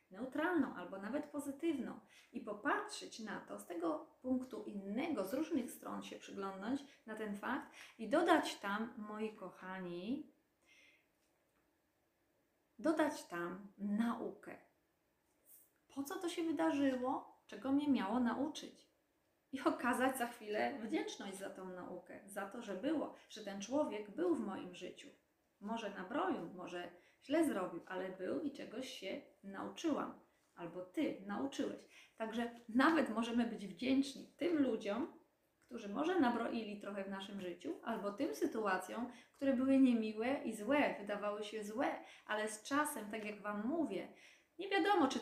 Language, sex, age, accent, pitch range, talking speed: Polish, female, 30-49, native, 210-300 Hz, 140 wpm